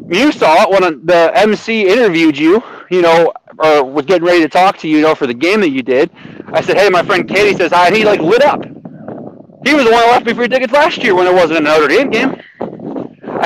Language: English